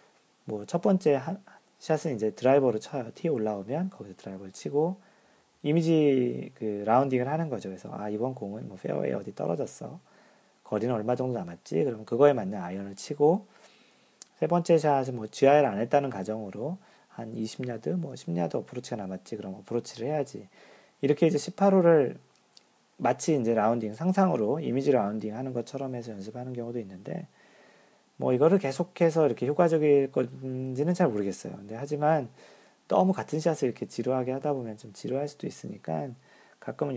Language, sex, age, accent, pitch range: Korean, male, 40-59, native, 110-155 Hz